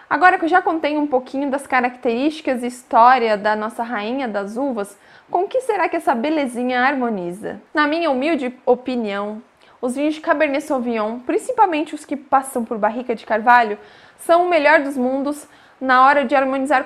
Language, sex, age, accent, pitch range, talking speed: Portuguese, female, 20-39, Brazilian, 235-290 Hz, 175 wpm